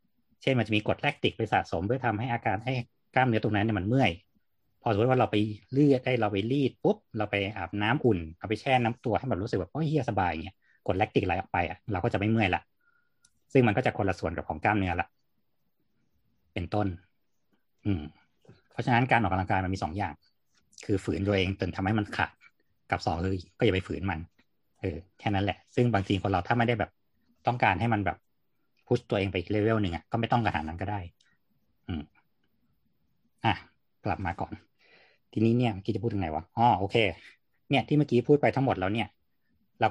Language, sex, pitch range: Thai, male, 100-120 Hz